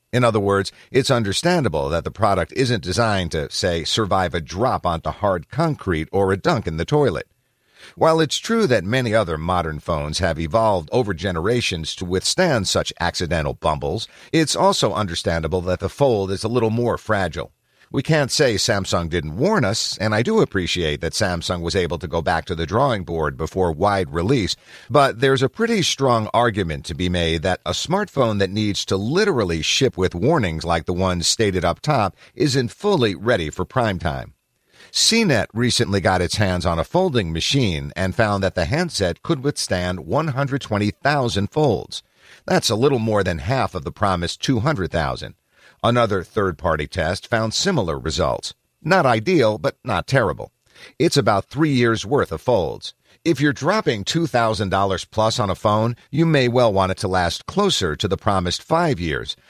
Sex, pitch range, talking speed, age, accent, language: male, 90-125 Hz, 175 wpm, 50-69, American, English